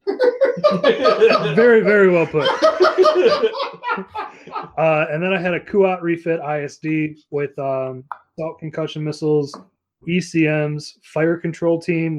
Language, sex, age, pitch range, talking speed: English, male, 20-39, 140-165 Hz, 105 wpm